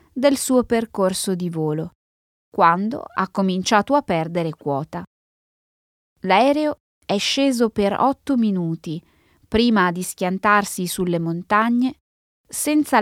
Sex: female